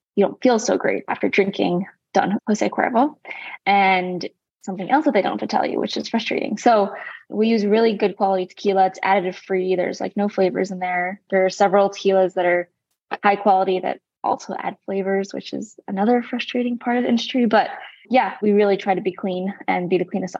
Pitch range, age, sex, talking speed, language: 185-210 Hz, 10-29, female, 210 wpm, English